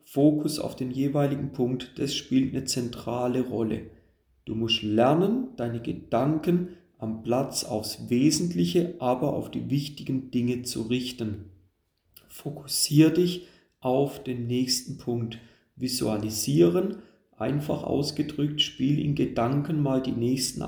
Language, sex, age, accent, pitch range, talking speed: German, male, 40-59, German, 120-150 Hz, 120 wpm